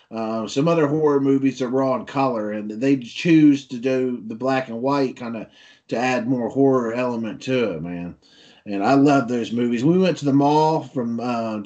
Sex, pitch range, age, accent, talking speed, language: male, 115-140 Hz, 30-49, American, 205 wpm, English